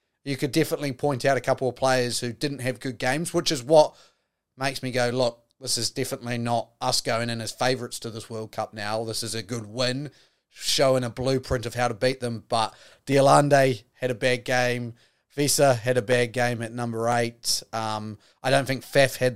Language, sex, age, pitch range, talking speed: English, male, 30-49, 120-135 Hz, 210 wpm